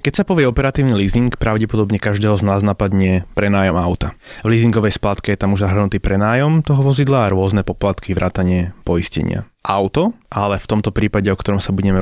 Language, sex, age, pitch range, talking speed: Slovak, male, 20-39, 95-115 Hz, 180 wpm